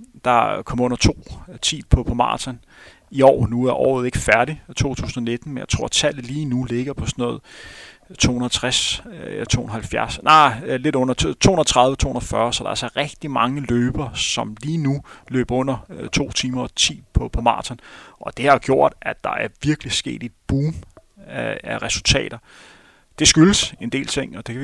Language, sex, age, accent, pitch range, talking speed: Danish, male, 30-49, native, 120-140 Hz, 175 wpm